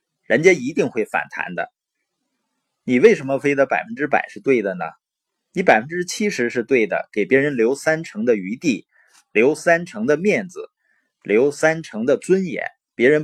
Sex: male